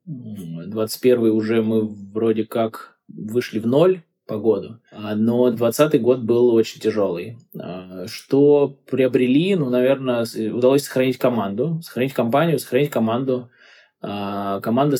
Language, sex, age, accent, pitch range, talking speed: Russian, male, 20-39, native, 110-135 Hz, 110 wpm